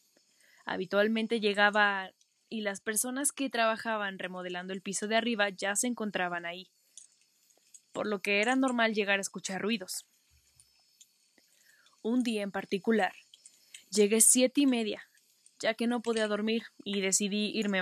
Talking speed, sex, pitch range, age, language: 140 wpm, female, 195-230 Hz, 10-29, Spanish